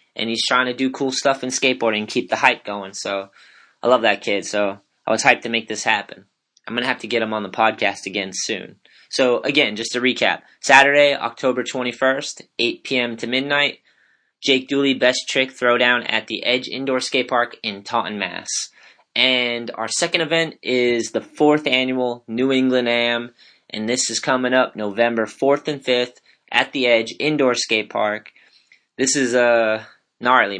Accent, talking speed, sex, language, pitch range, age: American, 185 wpm, male, English, 110-130 Hz, 20-39